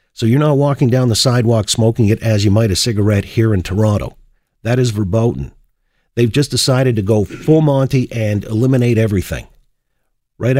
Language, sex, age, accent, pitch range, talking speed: English, male, 50-69, American, 100-130 Hz, 175 wpm